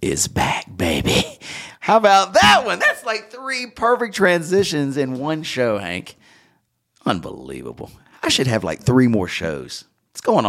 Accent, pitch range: American, 100-135 Hz